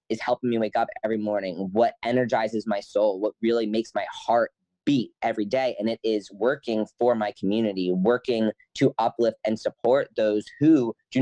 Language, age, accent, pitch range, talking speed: English, 10-29, American, 105-120 Hz, 180 wpm